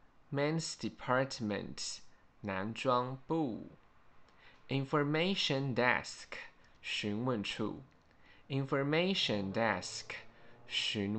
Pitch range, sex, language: 110-135 Hz, male, Chinese